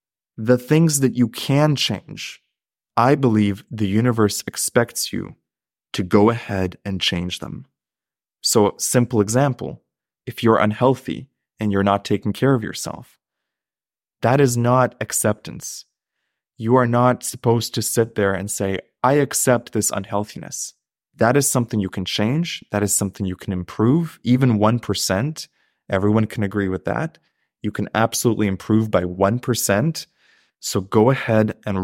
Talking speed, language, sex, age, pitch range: 145 wpm, English, male, 20-39, 105-140 Hz